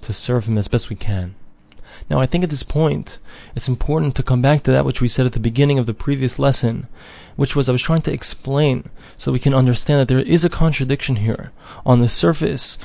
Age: 20-39